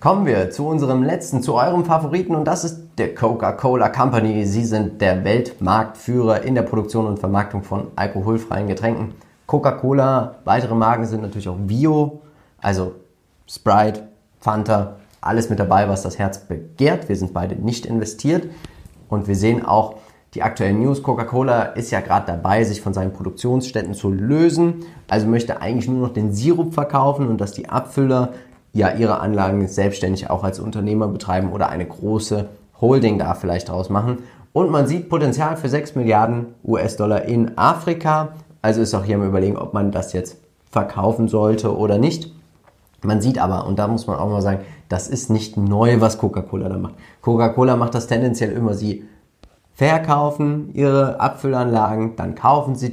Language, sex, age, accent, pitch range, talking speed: German, male, 30-49, German, 100-130 Hz, 170 wpm